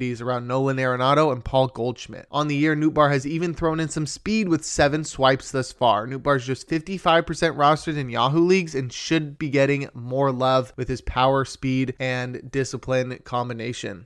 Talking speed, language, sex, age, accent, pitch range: 190 wpm, English, male, 20-39, American, 130-165 Hz